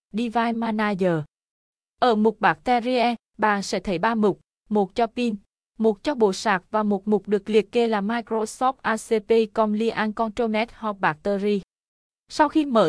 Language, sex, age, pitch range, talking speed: Vietnamese, female, 20-39, 190-230 Hz, 150 wpm